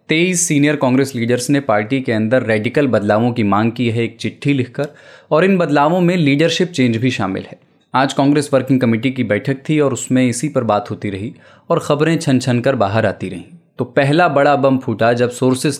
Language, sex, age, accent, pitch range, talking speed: Hindi, male, 20-39, native, 115-150 Hz, 205 wpm